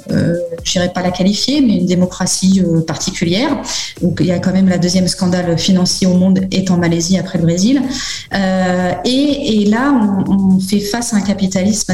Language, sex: French, female